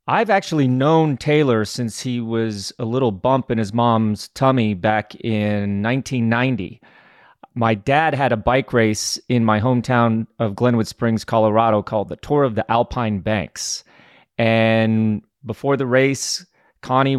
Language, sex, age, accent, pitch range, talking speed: English, male, 30-49, American, 110-130 Hz, 145 wpm